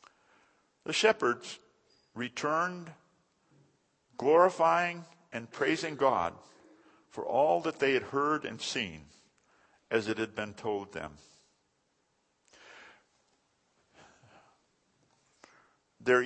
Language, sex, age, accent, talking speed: English, male, 50-69, American, 80 wpm